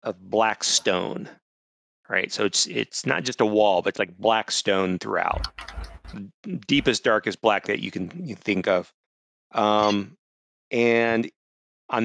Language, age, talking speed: English, 40-59, 145 wpm